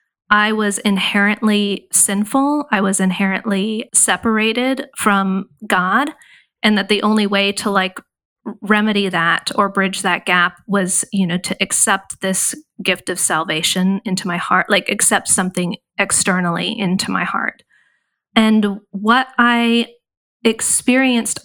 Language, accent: English, American